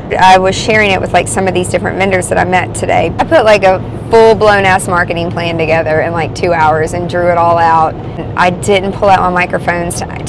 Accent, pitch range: American, 180-210 Hz